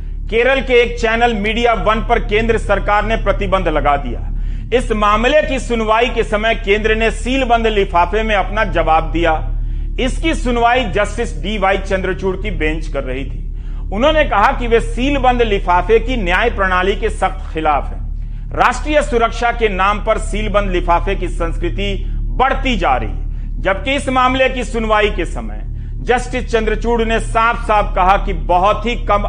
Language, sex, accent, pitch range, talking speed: Hindi, male, native, 180-235 Hz, 165 wpm